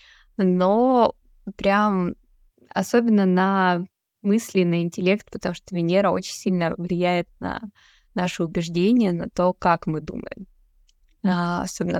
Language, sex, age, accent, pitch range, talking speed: Russian, female, 20-39, native, 175-210 Hz, 115 wpm